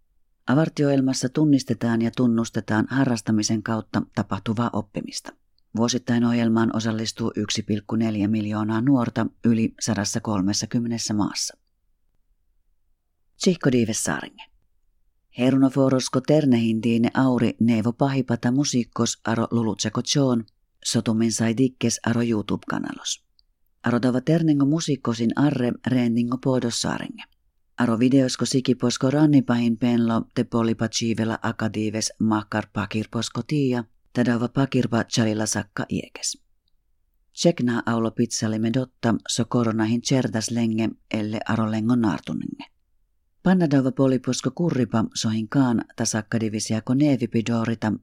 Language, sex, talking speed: Finnish, female, 90 wpm